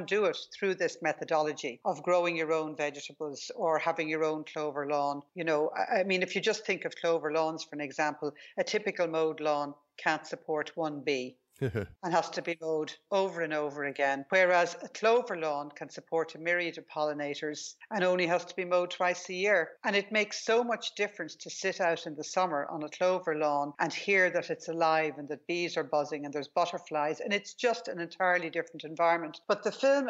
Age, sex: 60-79, female